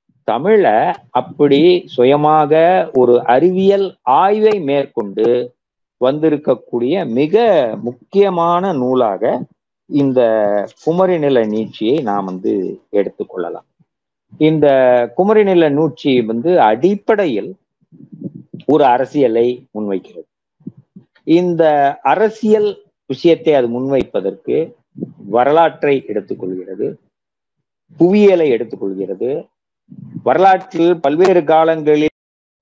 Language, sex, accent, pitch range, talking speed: Tamil, male, native, 125-170 Hz, 70 wpm